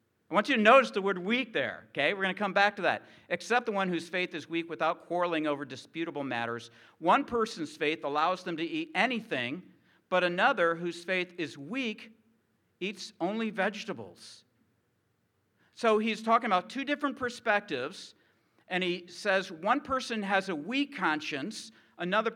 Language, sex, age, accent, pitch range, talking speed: English, male, 50-69, American, 150-220 Hz, 170 wpm